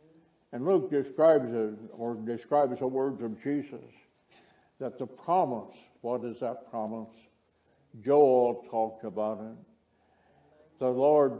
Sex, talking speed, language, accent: male, 120 wpm, English, American